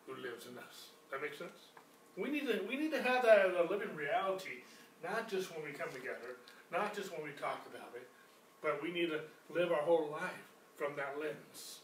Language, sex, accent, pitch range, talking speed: English, male, American, 160-220 Hz, 225 wpm